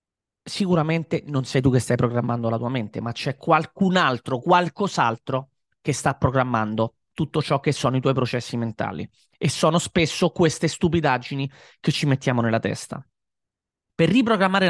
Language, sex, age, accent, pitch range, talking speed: Italian, male, 30-49, native, 135-185 Hz, 155 wpm